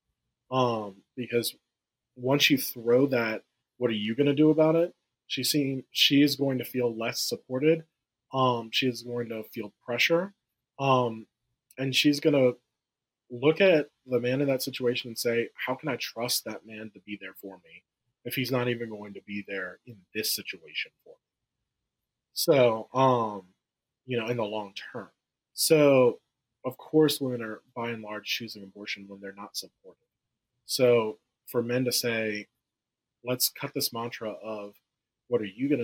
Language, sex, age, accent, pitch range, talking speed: English, male, 20-39, American, 110-130 Hz, 175 wpm